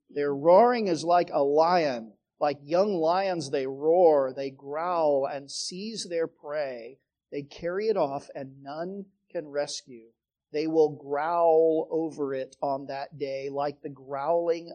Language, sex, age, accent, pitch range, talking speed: English, male, 40-59, American, 140-180 Hz, 145 wpm